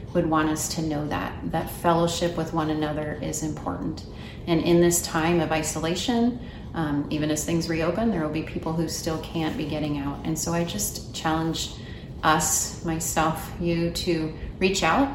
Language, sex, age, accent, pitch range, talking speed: English, female, 30-49, American, 155-175 Hz, 180 wpm